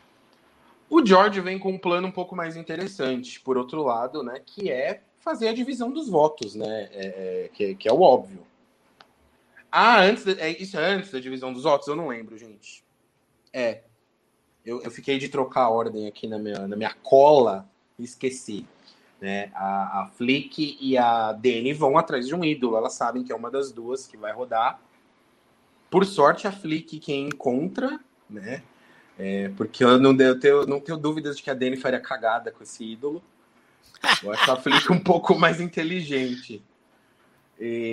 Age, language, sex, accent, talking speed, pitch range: 20-39, Portuguese, male, Brazilian, 175 wpm, 115-160 Hz